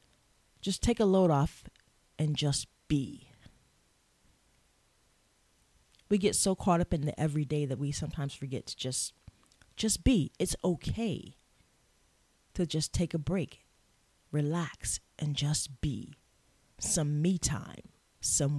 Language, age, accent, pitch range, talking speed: English, 40-59, American, 135-180 Hz, 125 wpm